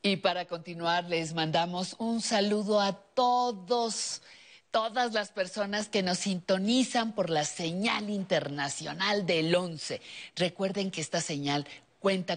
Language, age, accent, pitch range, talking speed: Spanish, 50-69, Mexican, 150-200 Hz, 125 wpm